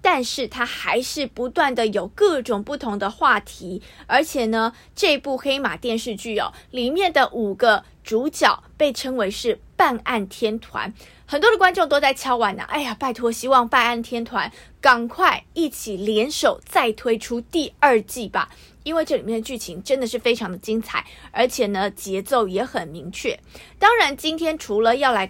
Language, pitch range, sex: Chinese, 220-285 Hz, female